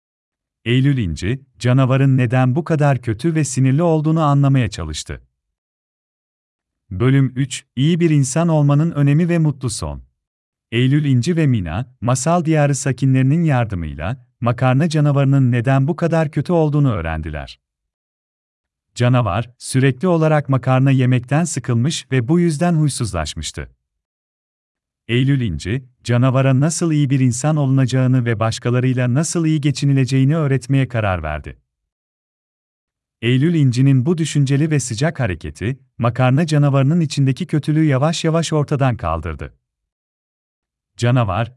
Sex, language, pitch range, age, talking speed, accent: male, Turkish, 90-145 Hz, 40-59, 115 wpm, native